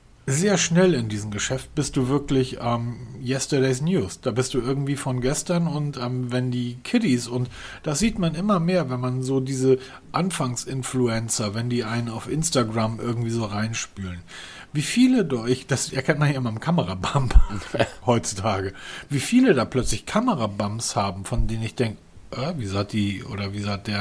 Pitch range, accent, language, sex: 105-140 Hz, German, German, male